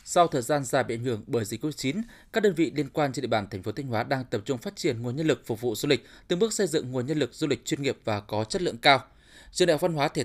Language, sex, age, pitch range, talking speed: Vietnamese, male, 20-39, 125-165 Hz, 330 wpm